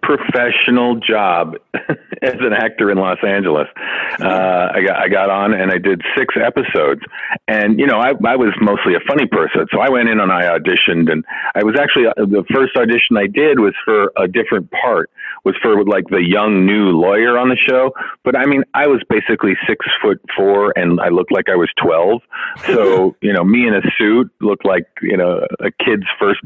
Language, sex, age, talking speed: English, male, 40-59, 205 wpm